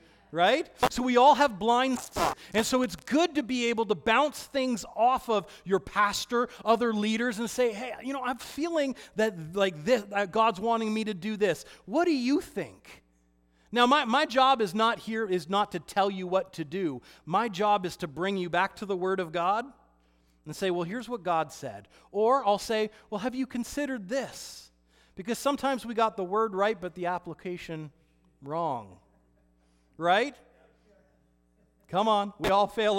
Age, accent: 40-59, American